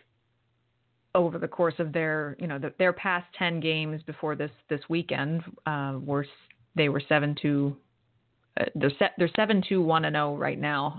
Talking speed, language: 165 wpm, English